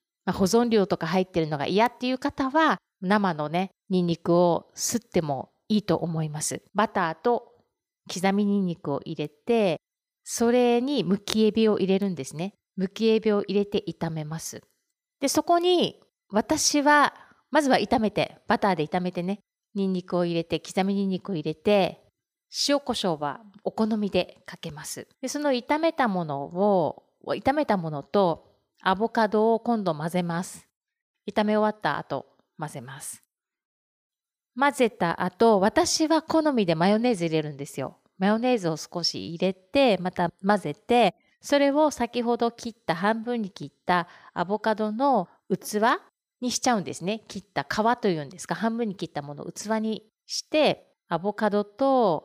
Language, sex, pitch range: Japanese, female, 175-235 Hz